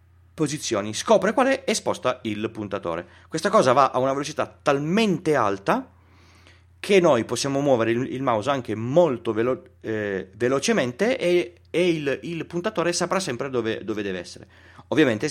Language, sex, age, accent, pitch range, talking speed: Italian, male, 30-49, native, 90-135 Hz, 155 wpm